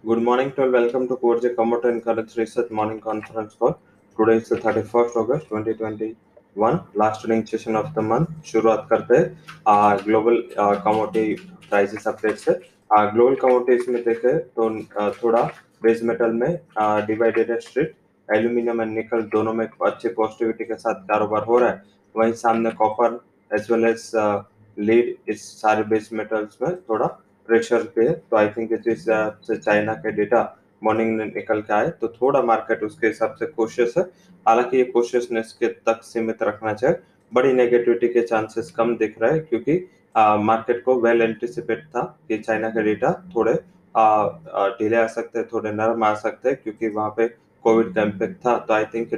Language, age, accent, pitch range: English, 20-39, Indian, 110-120 Hz